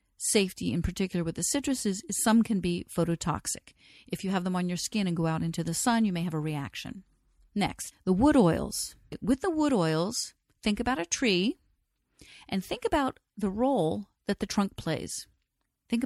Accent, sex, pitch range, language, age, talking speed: American, female, 175-230 Hz, English, 50-69, 190 wpm